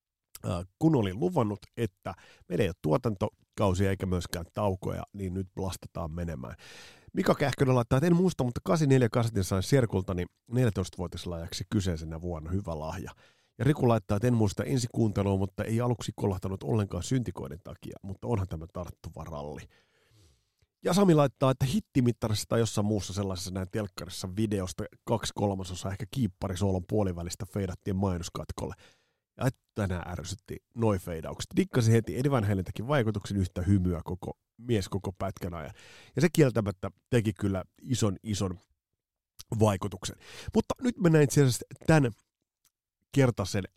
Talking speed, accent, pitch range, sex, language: 140 wpm, native, 95-125 Hz, male, Finnish